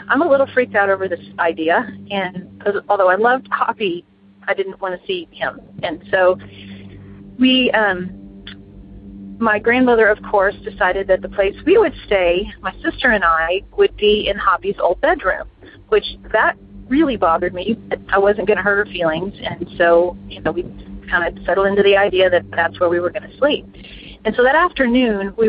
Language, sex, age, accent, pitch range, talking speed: English, female, 40-59, American, 170-220 Hz, 190 wpm